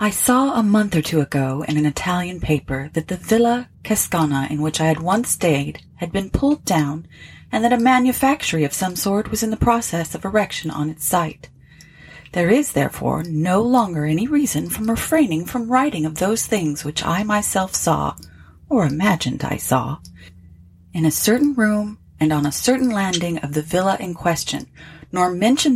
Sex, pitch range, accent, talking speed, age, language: female, 150-215 Hz, American, 185 wpm, 30-49, English